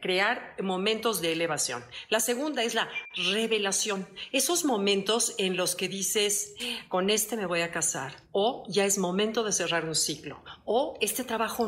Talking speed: 165 wpm